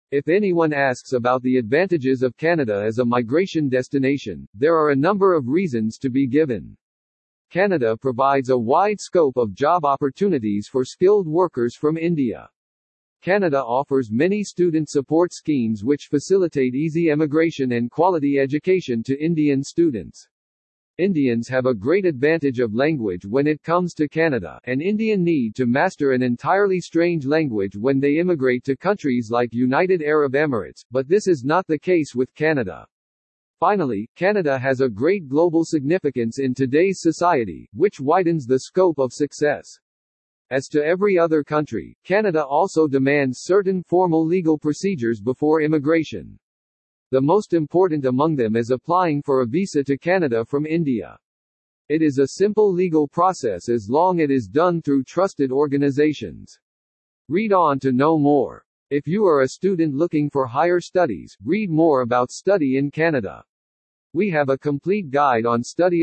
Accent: American